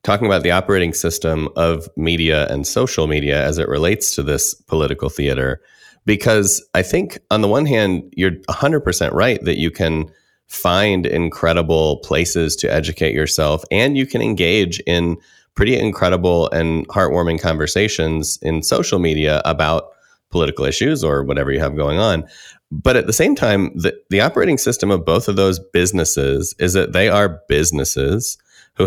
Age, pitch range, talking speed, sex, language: 30-49, 80-95 Hz, 160 wpm, male, English